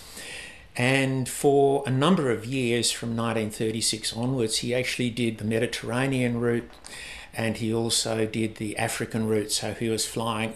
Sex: male